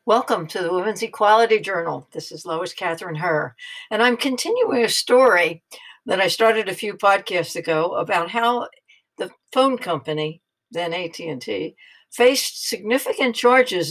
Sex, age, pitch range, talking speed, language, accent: female, 60-79, 165-230 Hz, 140 wpm, English, American